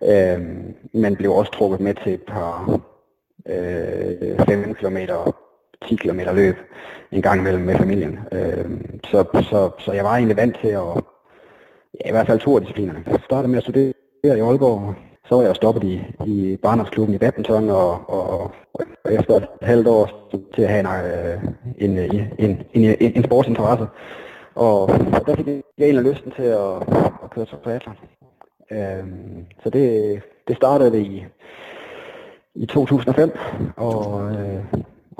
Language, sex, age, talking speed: Danish, male, 30-49, 160 wpm